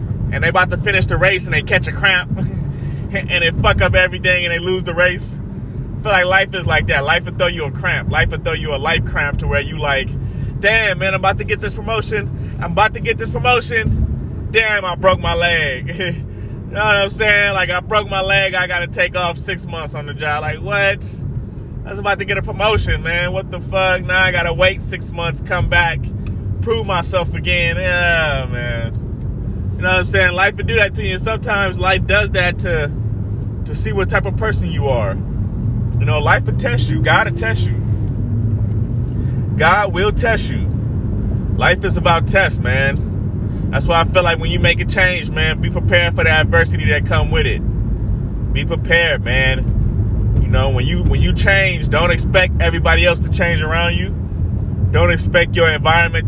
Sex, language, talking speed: male, English, 210 wpm